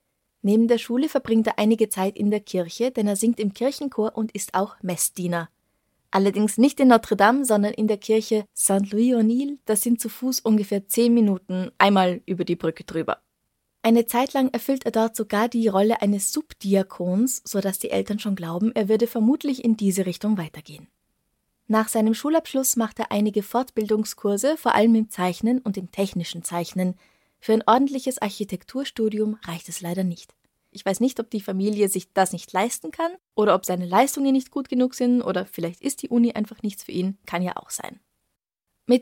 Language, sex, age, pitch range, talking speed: German, female, 20-39, 195-240 Hz, 190 wpm